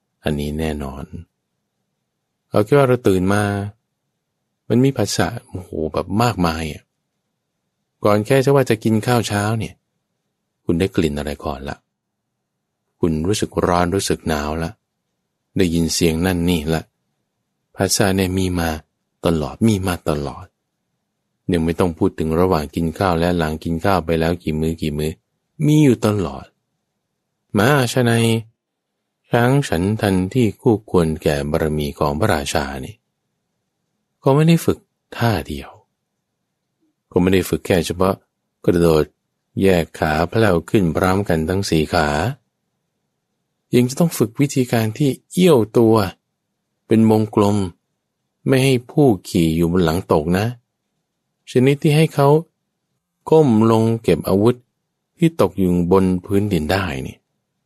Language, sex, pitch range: English, male, 85-120 Hz